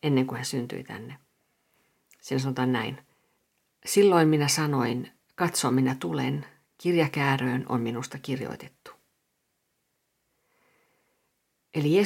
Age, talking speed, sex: 50-69, 95 wpm, female